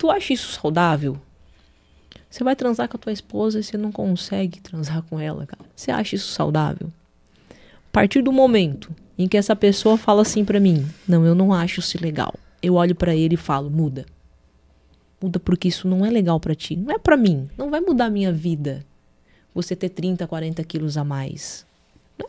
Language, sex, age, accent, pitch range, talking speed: Portuguese, female, 20-39, Brazilian, 155-225 Hz, 200 wpm